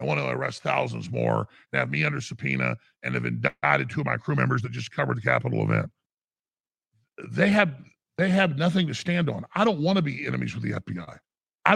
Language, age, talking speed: English, 50-69, 220 wpm